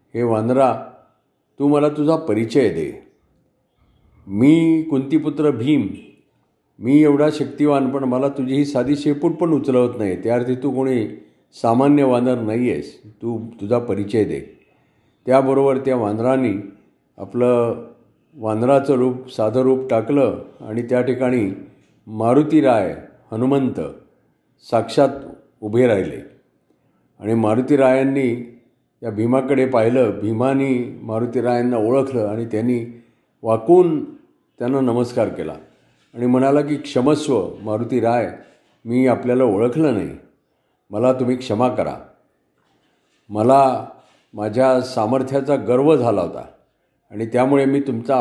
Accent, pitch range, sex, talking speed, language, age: native, 115-140 Hz, male, 105 wpm, Marathi, 50-69